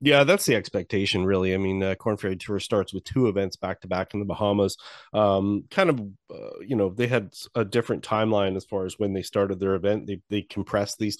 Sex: male